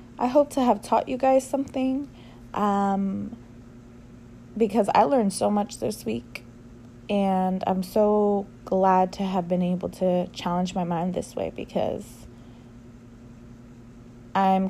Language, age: English, 20-39